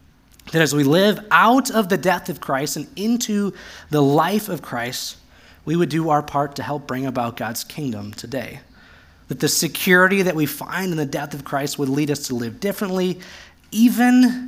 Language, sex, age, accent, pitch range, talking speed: English, male, 20-39, American, 130-180 Hz, 190 wpm